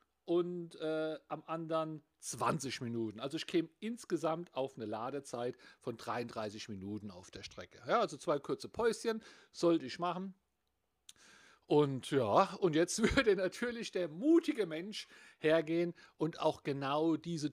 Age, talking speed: 50-69, 140 wpm